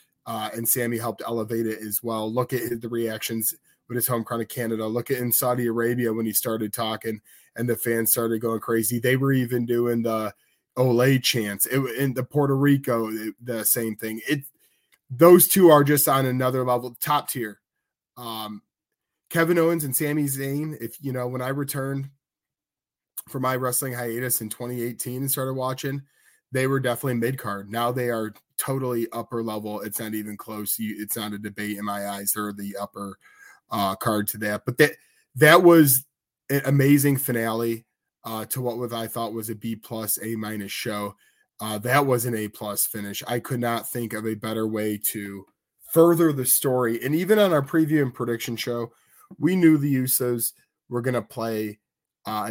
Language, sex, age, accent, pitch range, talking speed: English, male, 20-39, American, 110-130 Hz, 185 wpm